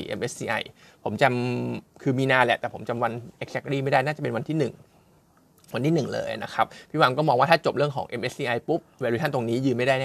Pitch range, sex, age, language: 120-150 Hz, male, 20-39, Thai